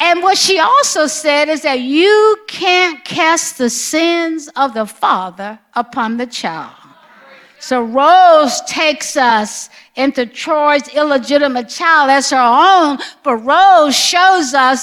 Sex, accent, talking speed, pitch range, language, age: female, American, 135 wpm, 260-340 Hz, English, 50-69